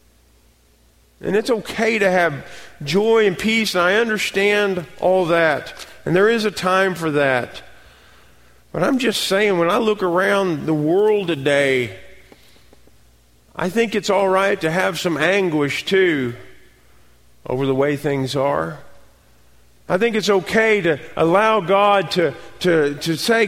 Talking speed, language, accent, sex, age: 145 wpm, English, American, male, 40-59